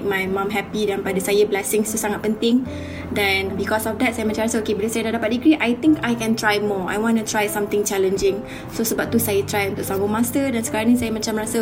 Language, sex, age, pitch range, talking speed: Malay, female, 20-39, 205-230 Hz, 255 wpm